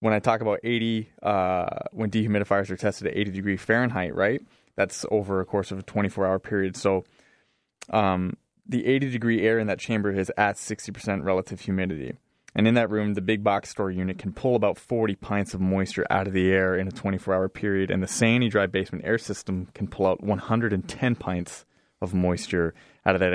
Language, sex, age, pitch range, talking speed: English, male, 20-39, 95-110 Hz, 205 wpm